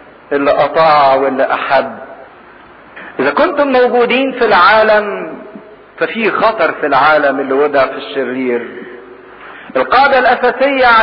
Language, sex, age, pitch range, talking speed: English, male, 50-69, 165-250 Hz, 105 wpm